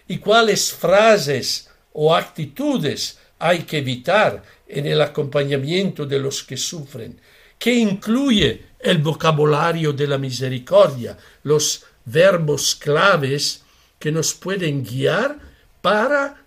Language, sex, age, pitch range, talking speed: Spanish, male, 60-79, 140-195 Hz, 110 wpm